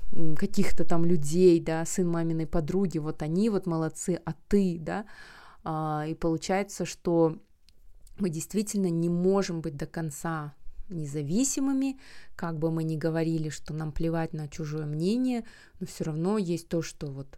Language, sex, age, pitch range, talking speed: Russian, female, 20-39, 160-185 Hz, 150 wpm